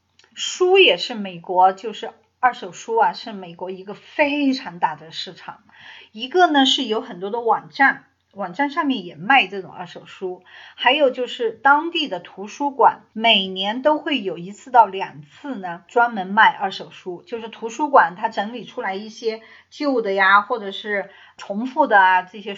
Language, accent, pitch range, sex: Chinese, native, 195-270 Hz, female